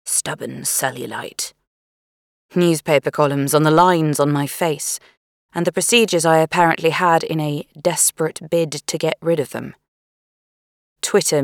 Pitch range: 130-165 Hz